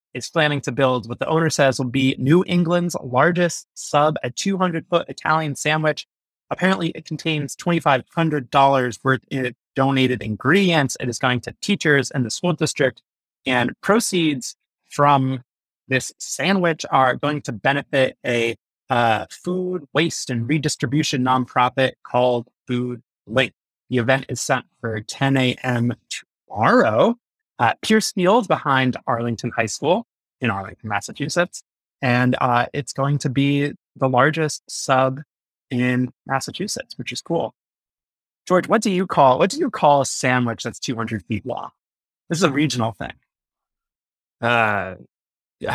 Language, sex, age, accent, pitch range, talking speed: English, male, 30-49, American, 120-160 Hz, 145 wpm